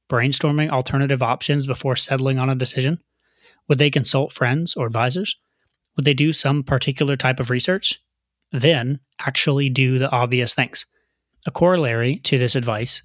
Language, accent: English, American